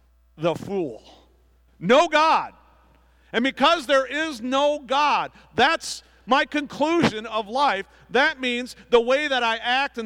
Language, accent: English, American